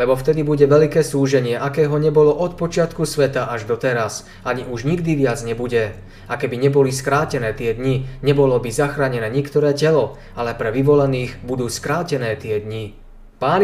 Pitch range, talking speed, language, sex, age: 125-150 Hz, 165 wpm, Slovak, male, 20-39